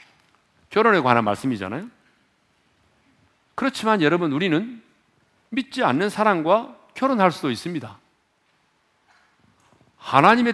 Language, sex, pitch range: Korean, male, 145-235 Hz